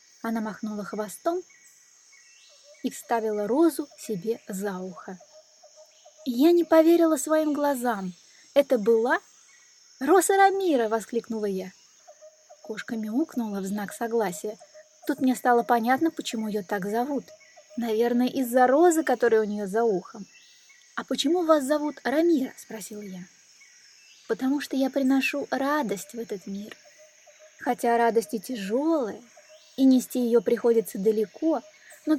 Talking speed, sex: 120 wpm, female